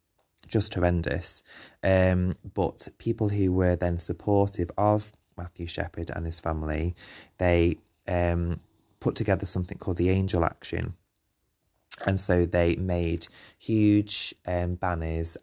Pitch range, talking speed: 80-95 Hz, 120 wpm